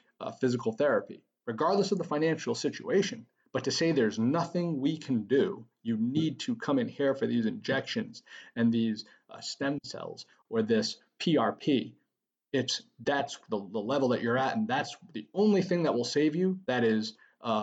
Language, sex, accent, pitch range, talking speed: English, male, American, 125-195 Hz, 180 wpm